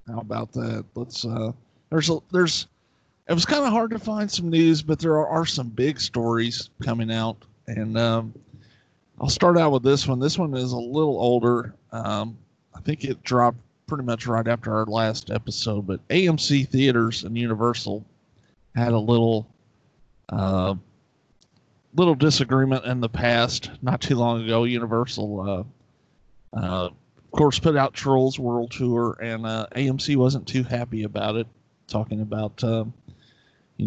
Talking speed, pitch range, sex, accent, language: 160 wpm, 115-135 Hz, male, American, English